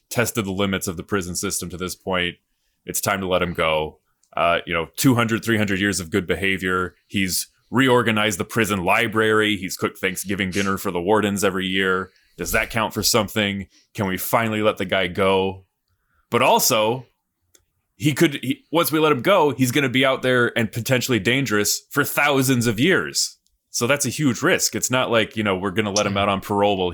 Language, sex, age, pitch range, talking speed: English, male, 20-39, 95-120 Hz, 205 wpm